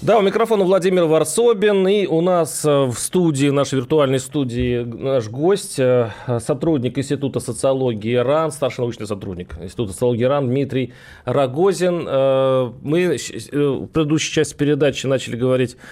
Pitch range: 125-165 Hz